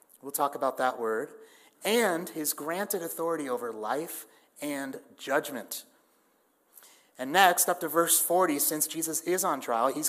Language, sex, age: English, male, 30-49